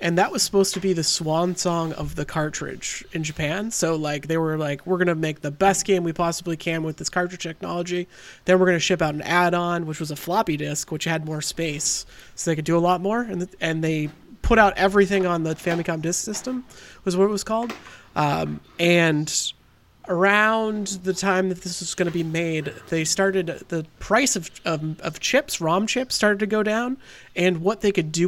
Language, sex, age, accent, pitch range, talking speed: English, male, 30-49, American, 165-195 Hz, 225 wpm